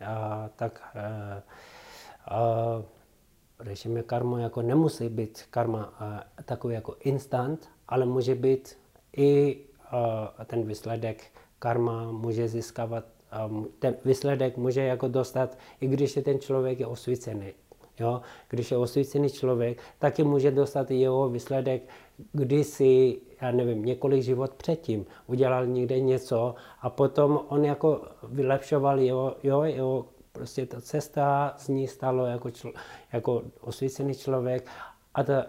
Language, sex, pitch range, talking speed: Czech, male, 115-140 Hz, 130 wpm